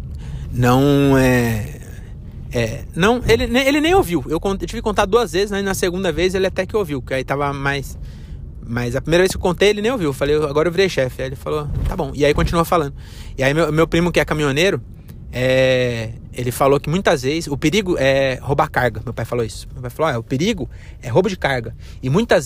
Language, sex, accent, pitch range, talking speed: Portuguese, male, Brazilian, 120-170 Hz, 230 wpm